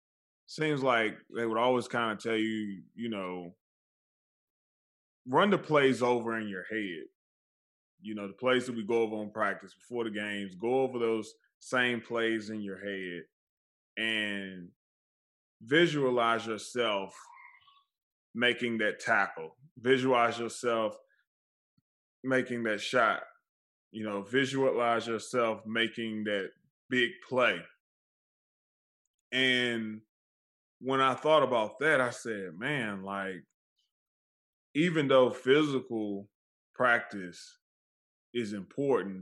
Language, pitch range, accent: English, 100-130 Hz, American